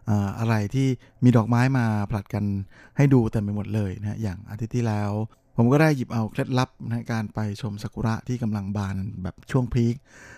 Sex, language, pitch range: male, Thai, 105-125 Hz